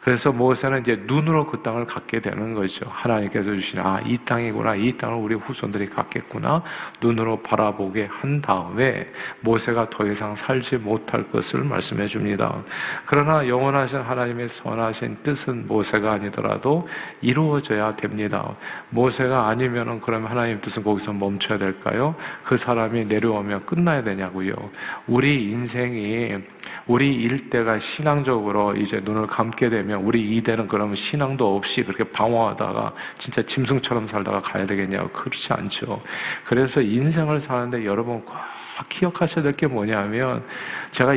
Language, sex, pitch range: Korean, male, 105-135 Hz